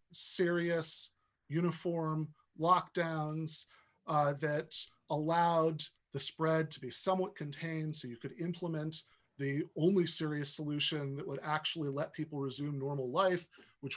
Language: English